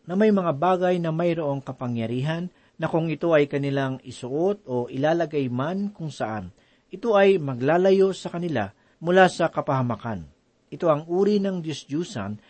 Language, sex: Filipino, male